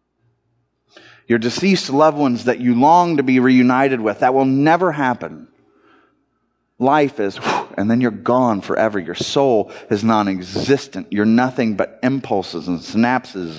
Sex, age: male, 30-49